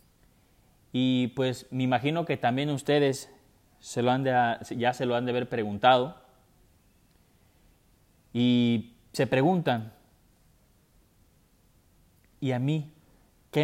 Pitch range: 110-140 Hz